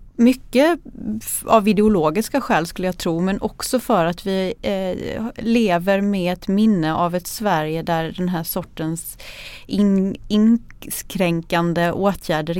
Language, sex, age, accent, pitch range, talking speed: Swedish, female, 30-49, native, 170-230 Hz, 120 wpm